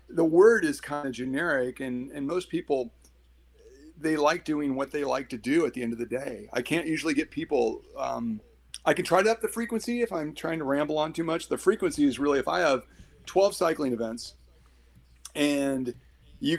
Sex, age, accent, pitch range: male, 40-59, American, 120-160 Hz